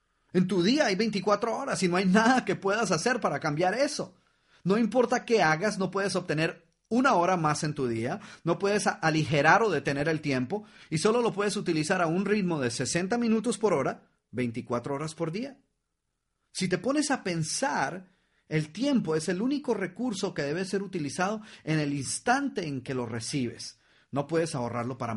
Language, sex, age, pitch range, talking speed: Spanish, male, 40-59, 135-205 Hz, 190 wpm